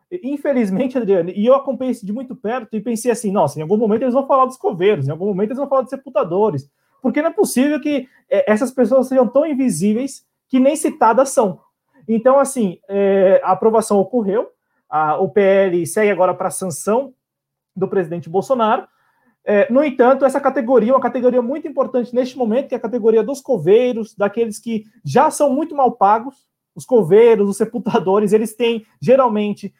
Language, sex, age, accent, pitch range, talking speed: Portuguese, male, 20-39, Brazilian, 195-265 Hz, 175 wpm